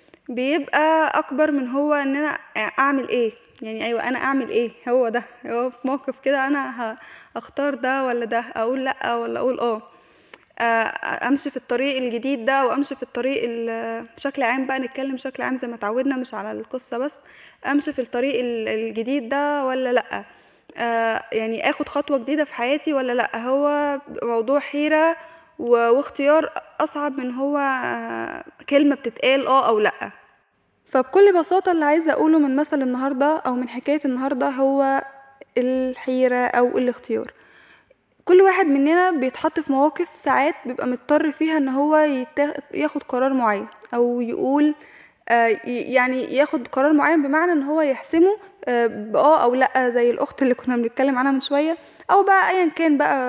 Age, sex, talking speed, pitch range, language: 10-29, female, 155 wpm, 245-290 Hz, Arabic